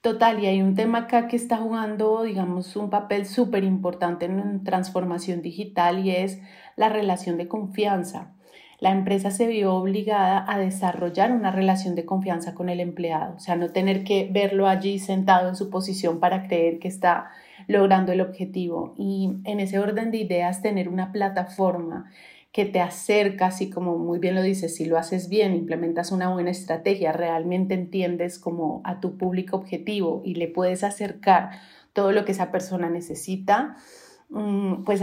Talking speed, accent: 170 wpm, Colombian